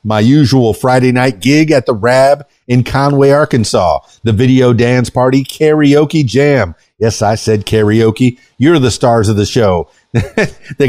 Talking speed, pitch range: 155 wpm, 105-140 Hz